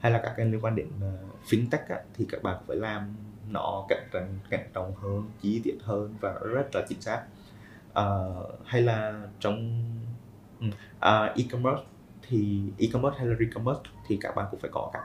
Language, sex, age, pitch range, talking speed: Vietnamese, male, 20-39, 100-115 Hz, 185 wpm